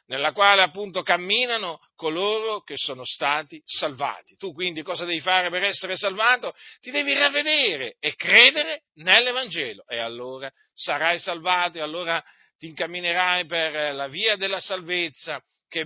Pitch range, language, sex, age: 150-190 Hz, Italian, male, 50-69